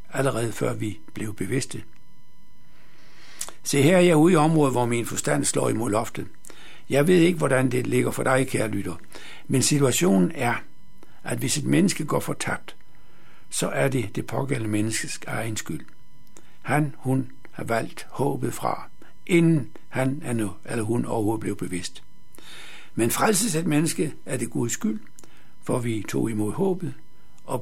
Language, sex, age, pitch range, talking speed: Danish, male, 60-79, 110-145 Hz, 160 wpm